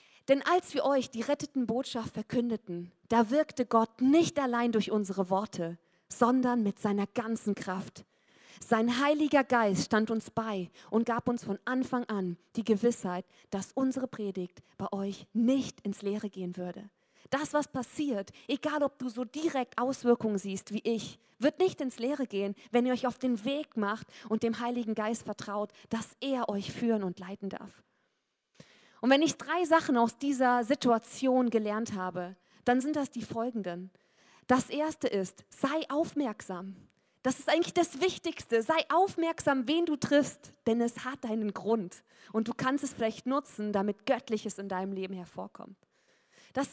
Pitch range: 205-270 Hz